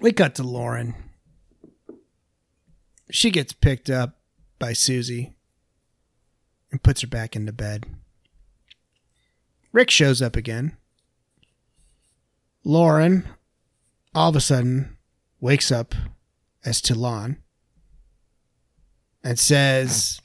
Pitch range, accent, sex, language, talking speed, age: 115-150 Hz, American, male, English, 90 wpm, 30-49